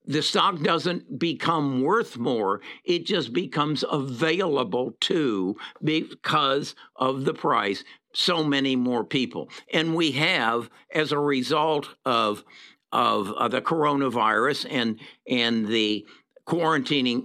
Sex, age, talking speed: male, 60-79, 120 wpm